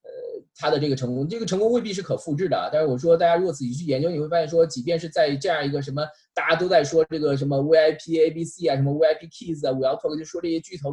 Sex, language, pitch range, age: male, Chinese, 125-165 Hz, 20-39